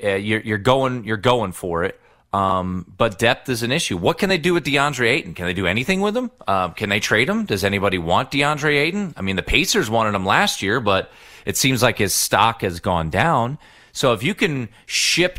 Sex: male